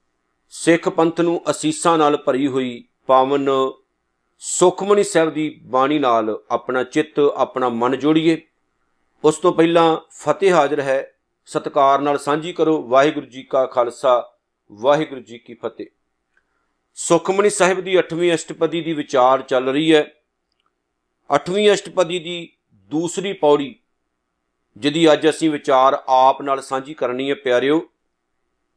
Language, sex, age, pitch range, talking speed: Punjabi, male, 50-69, 125-175 Hz, 115 wpm